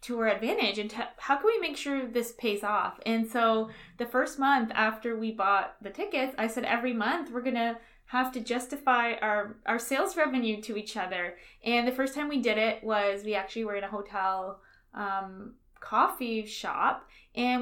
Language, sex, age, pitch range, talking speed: English, female, 20-39, 210-255 Hz, 190 wpm